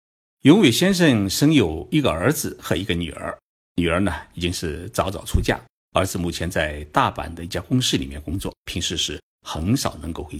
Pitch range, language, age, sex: 85-115 Hz, Chinese, 50-69, male